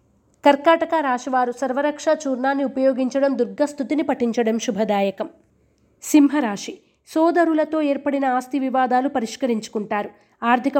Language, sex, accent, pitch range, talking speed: Telugu, female, native, 245-290 Hz, 85 wpm